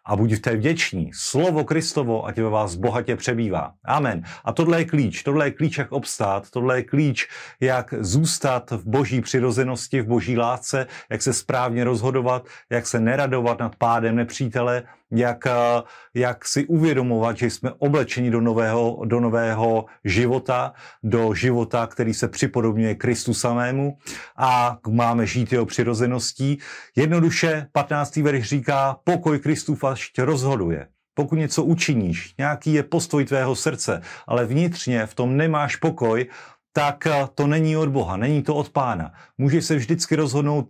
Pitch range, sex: 120-145 Hz, male